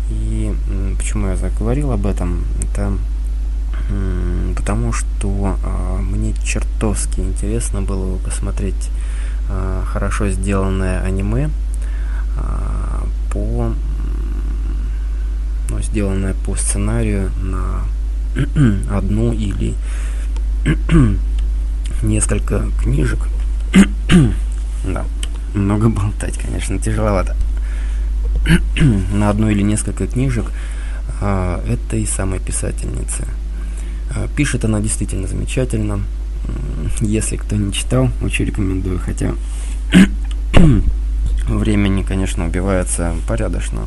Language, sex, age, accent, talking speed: Russian, male, 20-39, native, 75 wpm